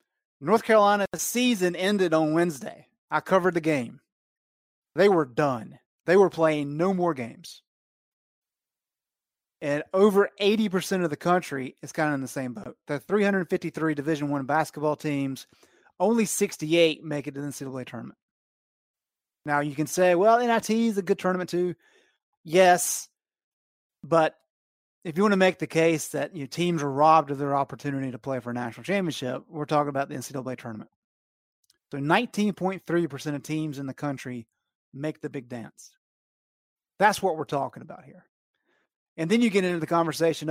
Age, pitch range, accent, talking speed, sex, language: 30-49, 140-185 Hz, American, 165 wpm, male, English